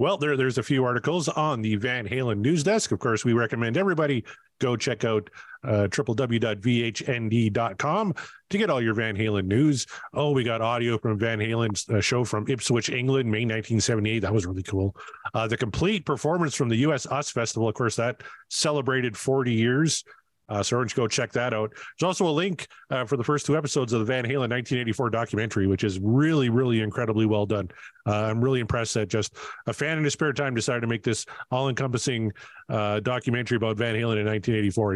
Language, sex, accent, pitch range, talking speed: English, male, American, 110-150 Hz, 205 wpm